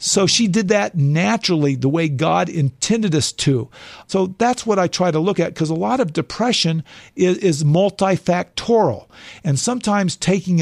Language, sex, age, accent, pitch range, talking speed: English, male, 50-69, American, 150-185 Hz, 170 wpm